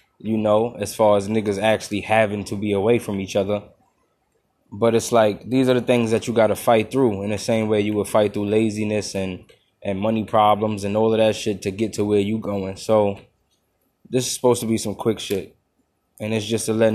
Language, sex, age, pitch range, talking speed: English, male, 10-29, 105-115 Hz, 230 wpm